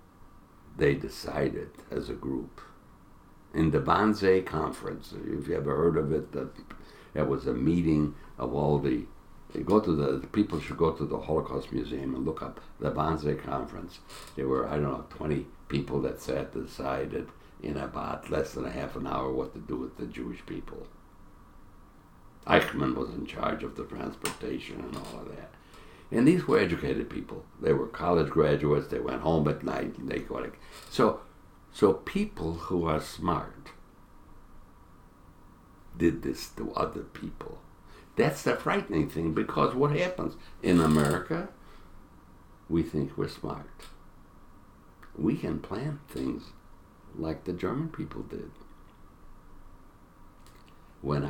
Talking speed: 150 wpm